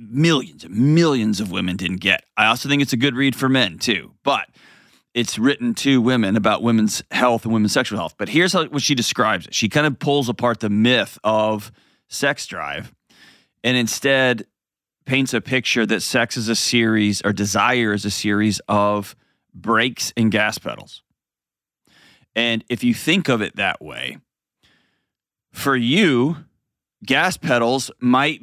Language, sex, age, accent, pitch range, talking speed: English, male, 30-49, American, 110-130 Hz, 165 wpm